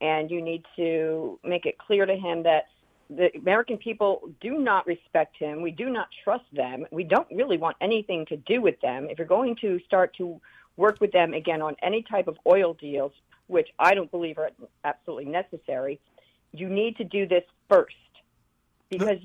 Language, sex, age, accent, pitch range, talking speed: English, female, 50-69, American, 170-250 Hz, 190 wpm